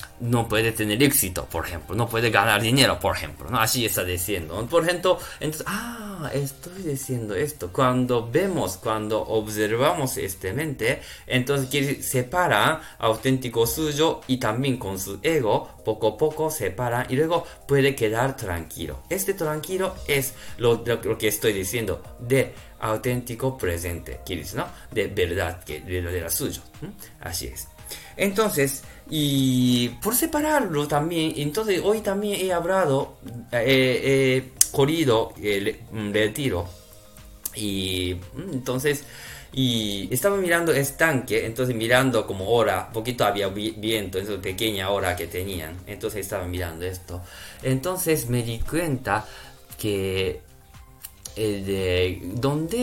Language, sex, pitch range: Japanese, male, 105-140 Hz